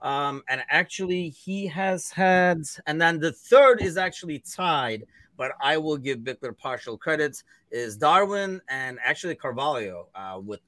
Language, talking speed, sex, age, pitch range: English, 150 wpm, male, 30-49, 110-160 Hz